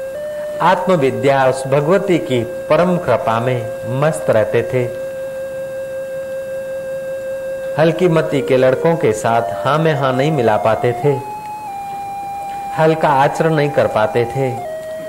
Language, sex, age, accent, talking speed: Hindi, male, 50-69, native, 115 wpm